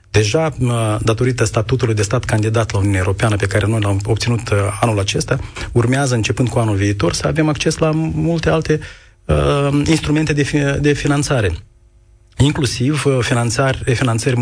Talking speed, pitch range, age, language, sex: 135 wpm, 110-135 Hz, 30-49, Romanian, male